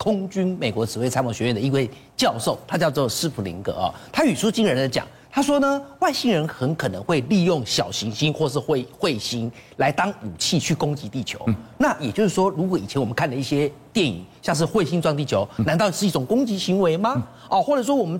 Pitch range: 140-220 Hz